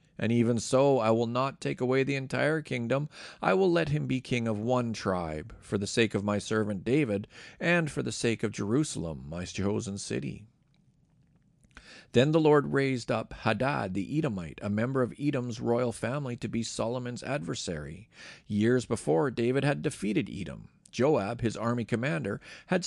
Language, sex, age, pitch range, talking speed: English, male, 40-59, 110-135 Hz, 170 wpm